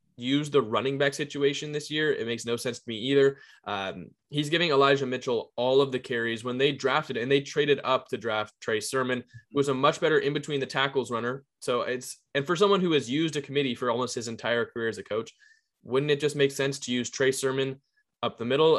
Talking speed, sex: 235 wpm, male